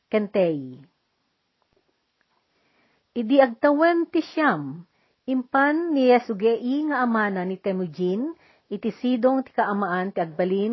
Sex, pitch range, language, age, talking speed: female, 190-250 Hz, Filipino, 50-69, 75 wpm